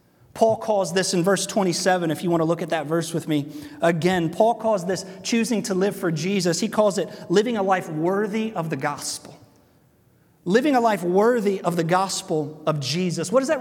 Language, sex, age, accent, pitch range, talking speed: English, male, 30-49, American, 165-225 Hz, 205 wpm